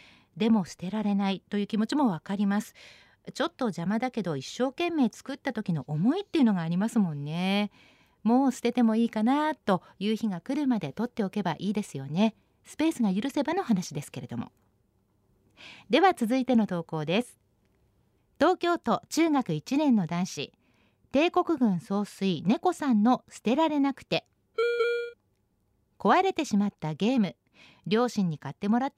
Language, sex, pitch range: Japanese, female, 185-265 Hz